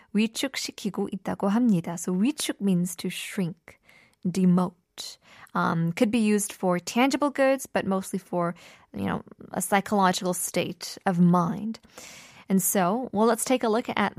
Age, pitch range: 20-39, 180-230 Hz